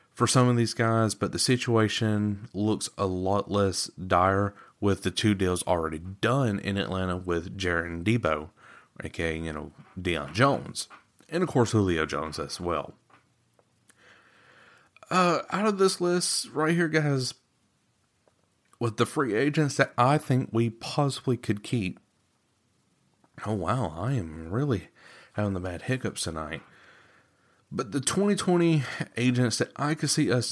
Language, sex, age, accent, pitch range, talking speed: English, male, 30-49, American, 95-135 Hz, 145 wpm